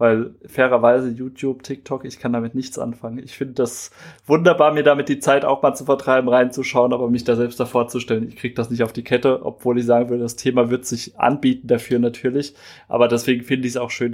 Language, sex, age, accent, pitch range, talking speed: German, male, 20-39, German, 120-130 Hz, 230 wpm